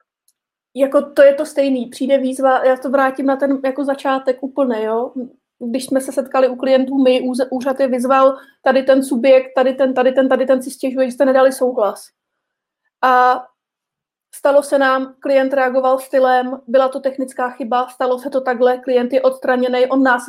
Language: Czech